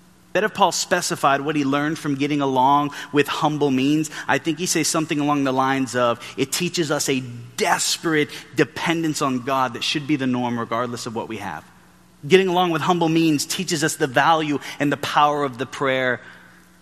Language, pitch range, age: English, 130-170 Hz, 30-49